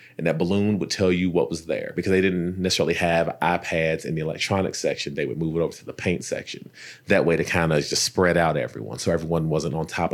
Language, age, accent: English, 30-49, American